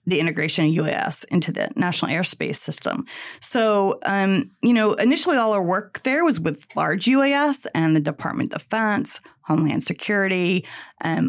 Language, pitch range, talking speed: English, 165-200 Hz, 160 wpm